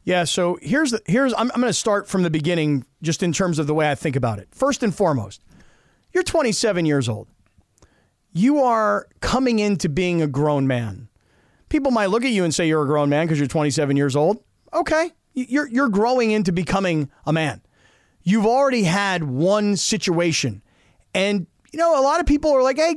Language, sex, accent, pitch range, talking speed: English, male, American, 165-240 Hz, 200 wpm